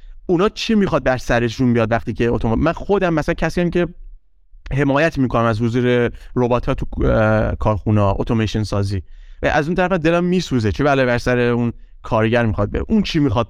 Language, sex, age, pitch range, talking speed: Persian, male, 30-49, 110-160 Hz, 185 wpm